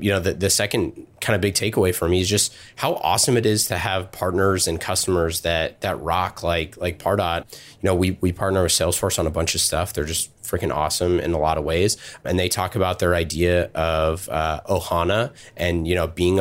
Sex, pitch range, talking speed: male, 85-105 Hz, 225 wpm